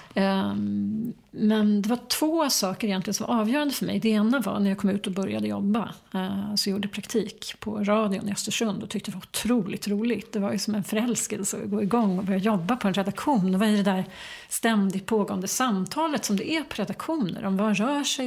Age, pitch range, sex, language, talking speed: 40-59, 200-230 Hz, female, English, 225 wpm